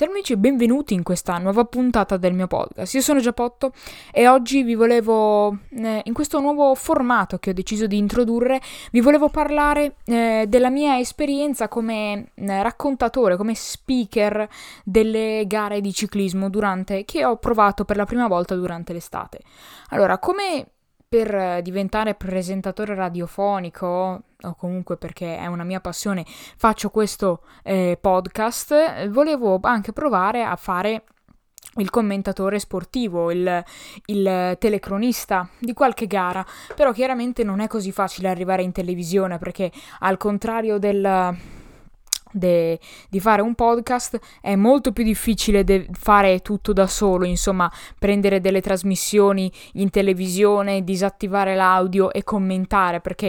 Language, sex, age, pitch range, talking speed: Italian, female, 10-29, 190-235 Hz, 135 wpm